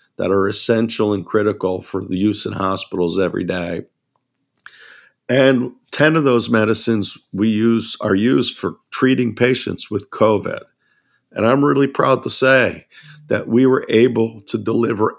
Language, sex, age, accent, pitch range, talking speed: English, male, 50-69, American, 105-125 Hz, 150 wpm